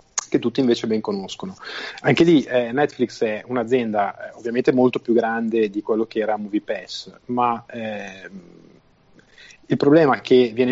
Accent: native